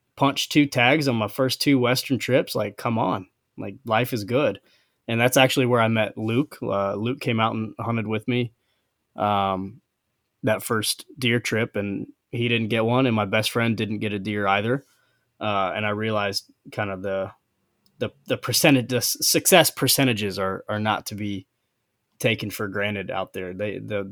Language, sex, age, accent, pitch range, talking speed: English, male, 20-39, American, 100-125 Hz, 185 wpm